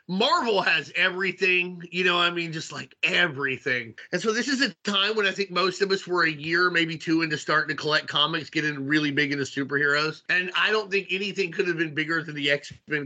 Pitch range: 160-205 Hz